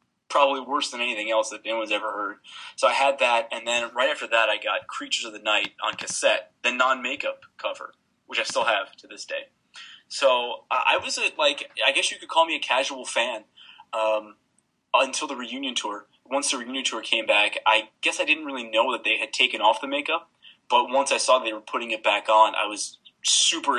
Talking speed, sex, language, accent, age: 220 wpm, male, English, American, 20-39